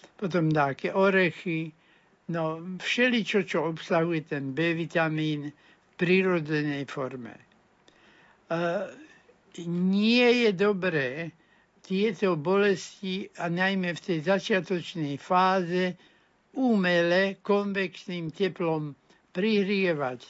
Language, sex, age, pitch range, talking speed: Slovak, male, 60-79, 160-190 Hz, 85 wpm